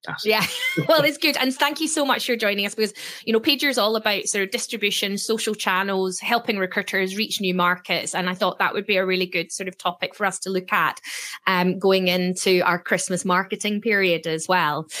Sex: female